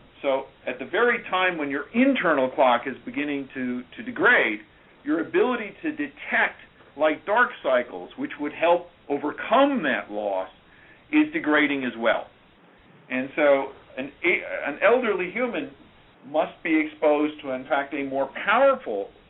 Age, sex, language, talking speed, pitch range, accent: 50-69, male, English, 140 wpm, 130-200 Hz, American